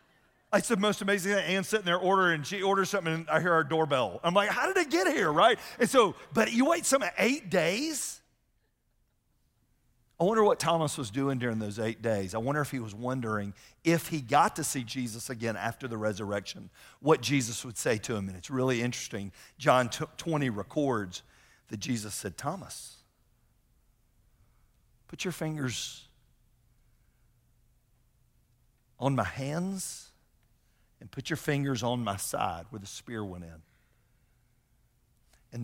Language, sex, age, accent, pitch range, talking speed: English, male, 50-69, American, 115-155 Hz, 160 wpm